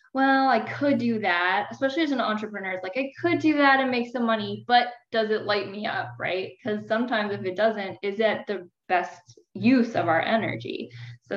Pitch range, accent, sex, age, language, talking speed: 175-220 Hz, American, female, 10-29, English, 205 wpm